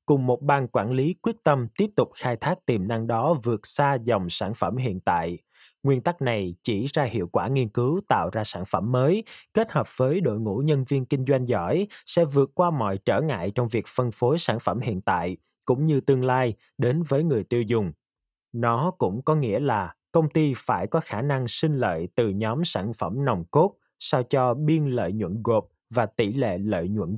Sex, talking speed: male, 215 wpm